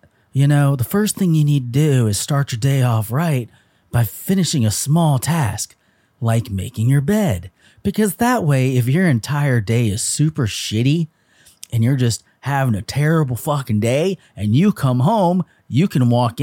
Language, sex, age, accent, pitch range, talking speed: English, male, 30-49, American, 120-190 Hz, 180 wpm